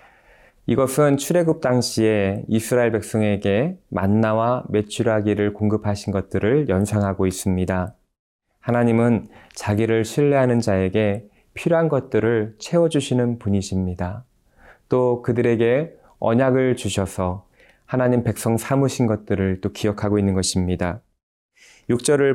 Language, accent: Korean, native